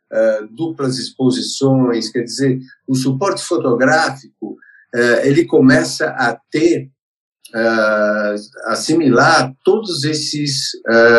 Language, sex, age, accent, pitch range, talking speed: Portuguese, male, 50-69, Brazilian, 120-165 Hz, 90 wpm